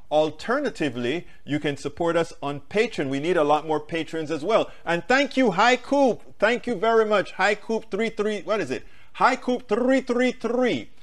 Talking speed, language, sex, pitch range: 175 wpm, English, male, 150-210 Hz